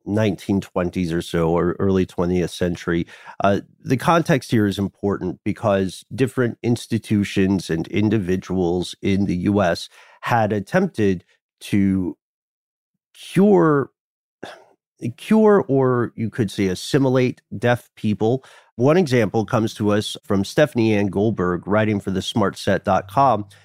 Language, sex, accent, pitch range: English, male, American, 100-130 Hz